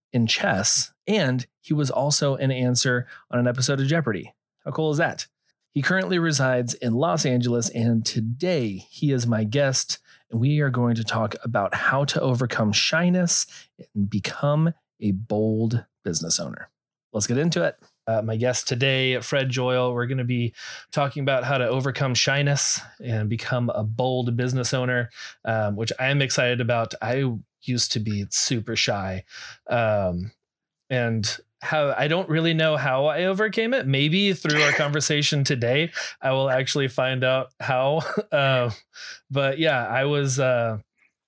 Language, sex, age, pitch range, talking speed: English, male, 30-49, 120-145 Hz, 165 wpm